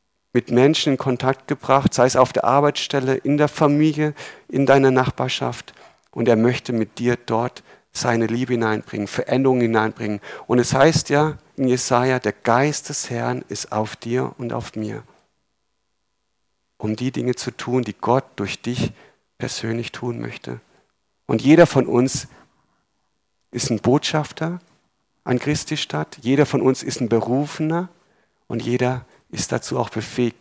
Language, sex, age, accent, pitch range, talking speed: German, male, 50-69, German, 110-135 Hz, 150 wpm